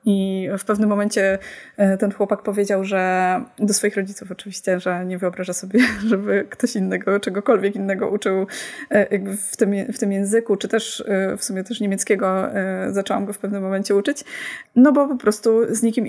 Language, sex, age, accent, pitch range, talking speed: Polish, female, 20-39, native, 200-235 Hz, 165 wpm